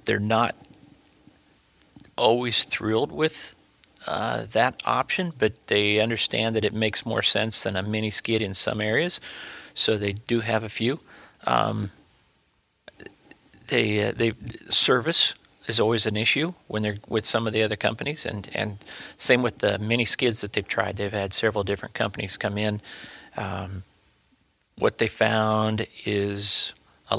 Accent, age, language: American, 40-59, English